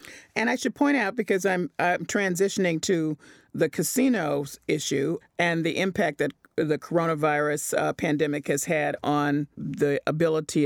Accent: American